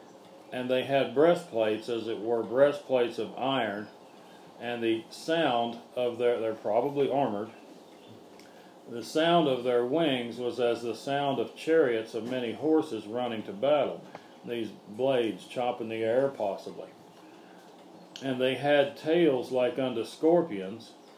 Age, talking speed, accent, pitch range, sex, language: 40-59, 135 wpm, American, 115-140 Hz, male, English